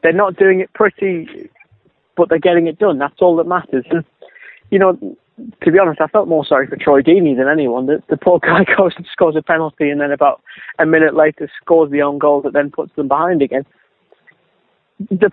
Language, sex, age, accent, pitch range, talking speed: English, male, 20-39, British, 155-195 Hz, 210 wpm